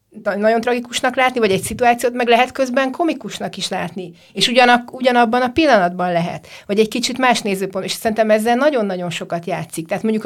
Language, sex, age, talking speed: Hungarian, female, 30-49, 180 wpm